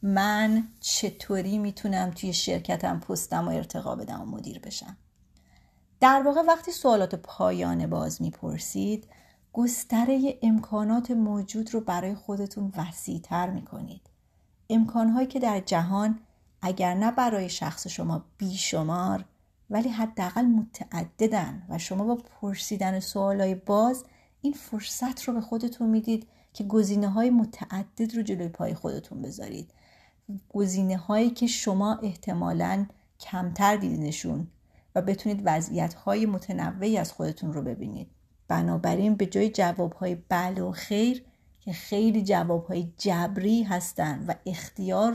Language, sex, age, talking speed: Persian, female, 30-49, 120 wpm